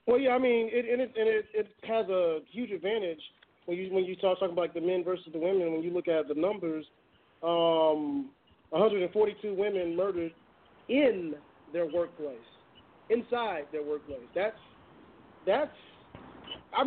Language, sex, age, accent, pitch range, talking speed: English, male, 30-49, American, 175-250 Hz, 165 wpm